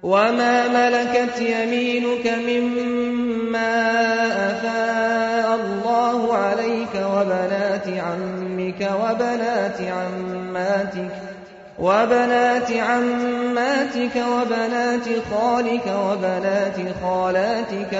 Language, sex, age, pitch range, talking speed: English, male, 30-49, 185-240 Hz, 55 wpm